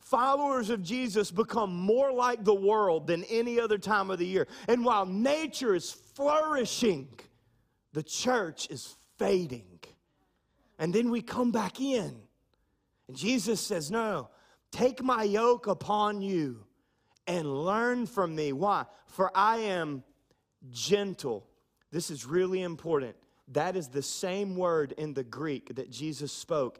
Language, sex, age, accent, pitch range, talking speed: English, male, 30-49, American, 125-210 Hz, 145 wpm